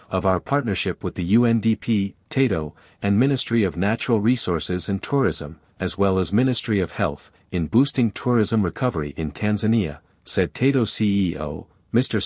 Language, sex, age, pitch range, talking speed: English, male, 50-69, 90-120 Hz, 145 wpm